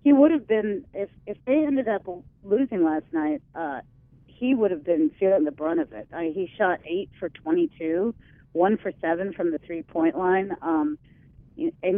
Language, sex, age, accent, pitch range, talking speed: English, female, 40-59, American, 165-245 Hz, 190 wpm